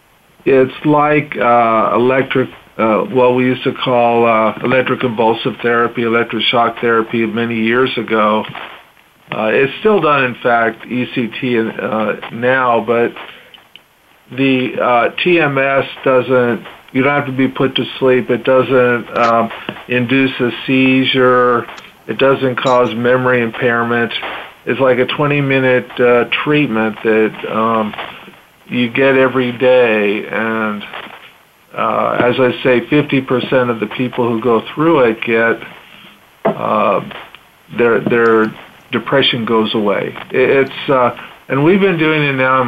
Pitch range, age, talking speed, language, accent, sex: 115-130 Hz, 50-69, 135 wpm, English, American, male